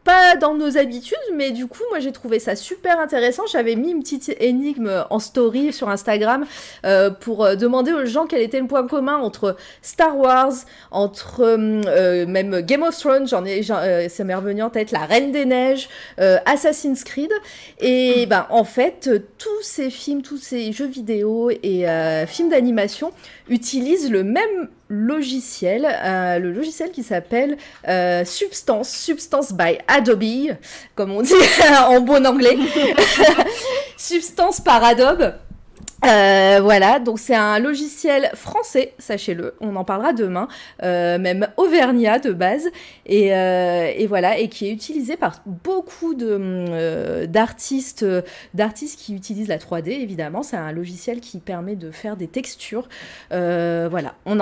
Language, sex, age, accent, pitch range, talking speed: French, female, 30-49, French, 195-285 Hz, 155 wpm